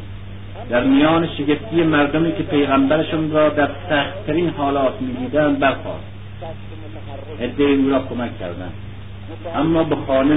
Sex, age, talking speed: male, 50-69, 120 wpm